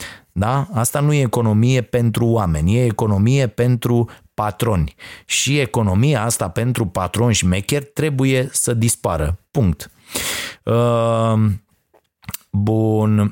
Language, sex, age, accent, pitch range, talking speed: Romanian, male, 30-49, native, 90-110 Hz, 100 wpm